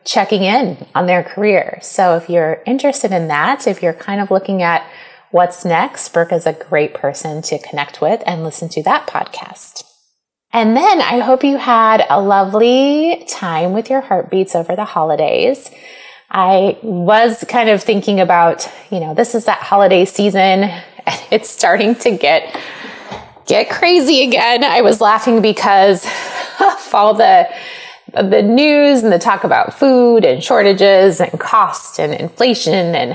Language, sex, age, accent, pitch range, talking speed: English, female, 20-39, American, 180-245 Hz, 160 wpm